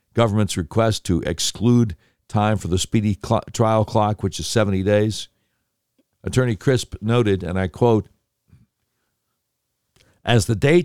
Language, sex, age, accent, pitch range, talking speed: English, male, 60-79, American, 95-130 Hz, 115 wpm